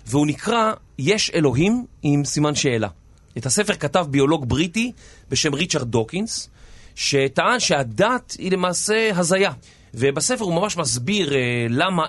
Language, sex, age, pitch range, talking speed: Hebrew, male, 30-49, 125-170 Hz, 125 wpm